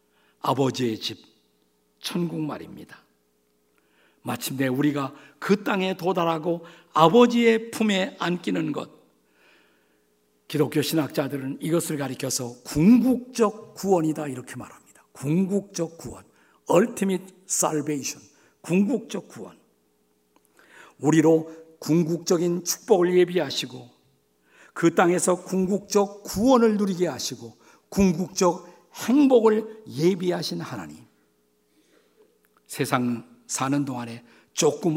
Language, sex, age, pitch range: Korean, male, 50-69, 115-180 Hz